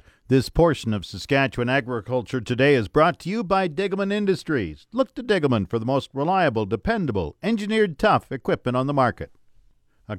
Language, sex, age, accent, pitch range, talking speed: English, male, 50-69, American, 120-160 Hz, 165 wpm